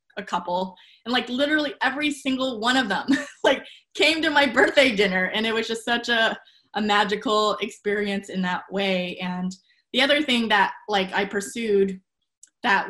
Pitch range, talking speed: 200-255 Hz, 170 wpm